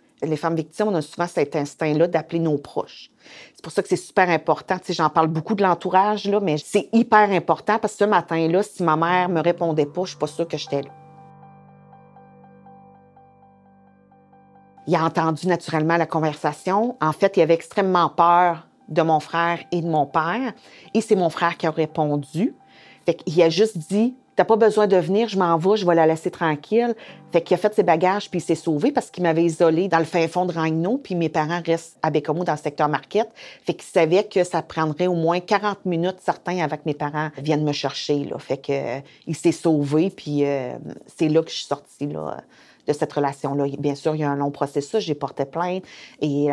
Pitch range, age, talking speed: 150-180 Hz, 40-59, 225 wpm